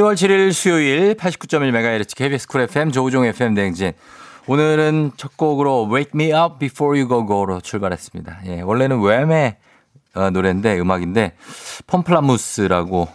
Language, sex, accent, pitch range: Korean, male, native, 100-155 Hz